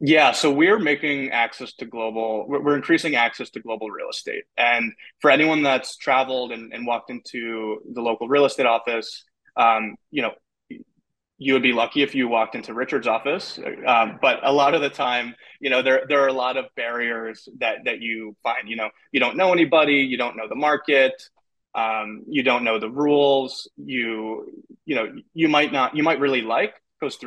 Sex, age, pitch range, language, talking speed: male, 20-39, 115-145 Hz, English, 195 wpm